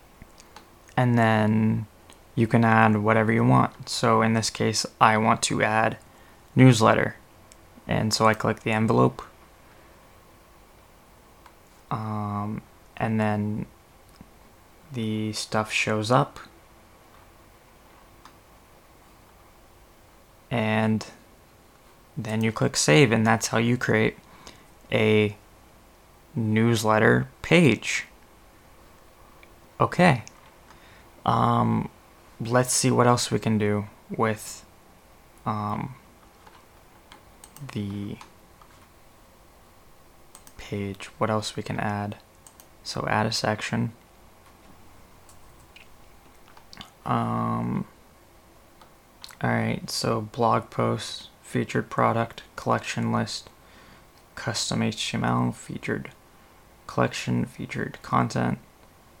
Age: 20-39